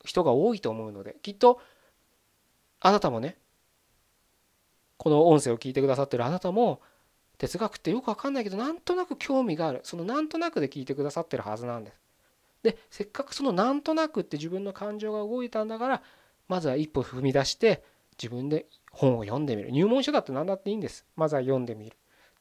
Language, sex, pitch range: Japanese, male, 125-210 Hz